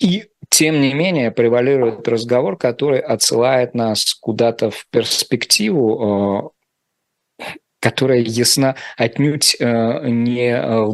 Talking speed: 95 wpm